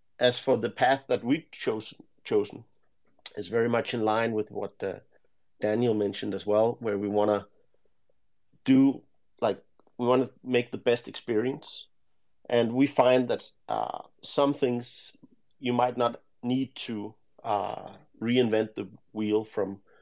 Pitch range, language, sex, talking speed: 105-125 Hz, English, male, 145 wpm